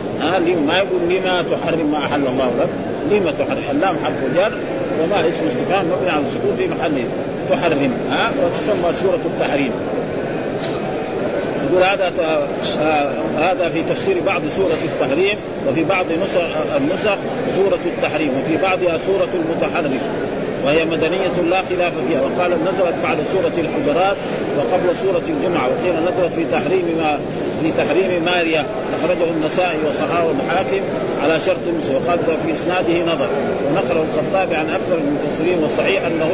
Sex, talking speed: male, 135 wpm